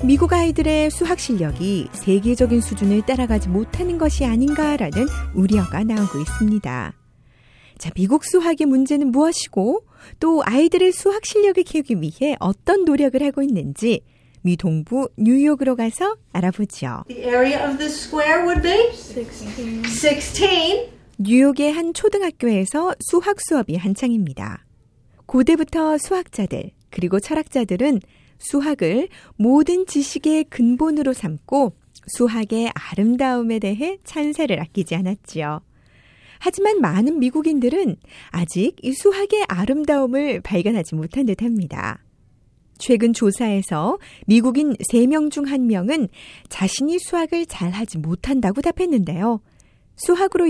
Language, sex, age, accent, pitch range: Korean, female, 40-59, native, 200-310 Hz